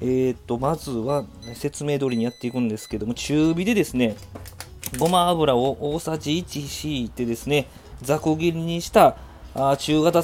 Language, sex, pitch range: Japanese, male, 105-155 Hz